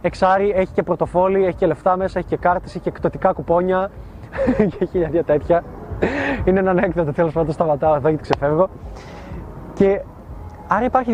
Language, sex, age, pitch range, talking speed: Greek, male, 20-39, 145-185 Hz, 165 wpm